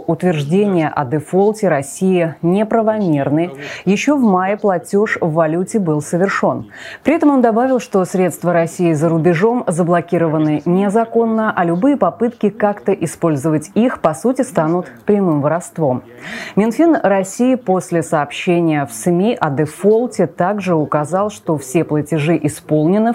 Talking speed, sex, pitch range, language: 125 wpm, female, 155-210 Hz, Russian